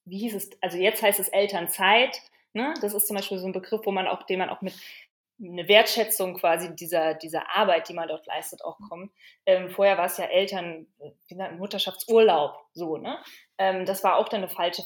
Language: German